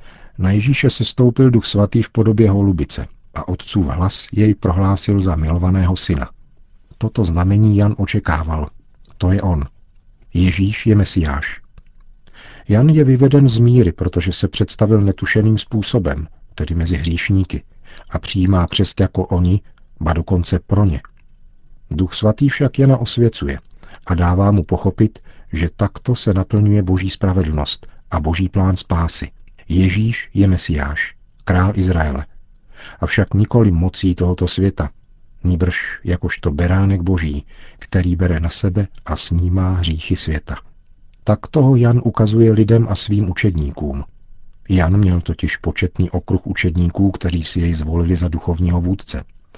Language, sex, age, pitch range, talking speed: Czech, male, 50-69, 85-105 Hz, 135 wpm